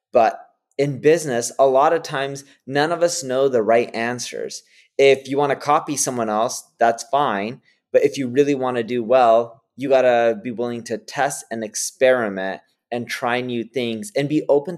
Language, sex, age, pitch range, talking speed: English, male, 20-39, 110-135 Hz, 190 wpm